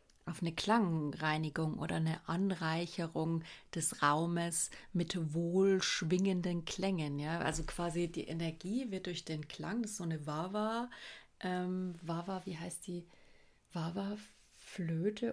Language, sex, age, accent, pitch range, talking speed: German, female, 30-49, German, 160-185 Hz, 115 wpm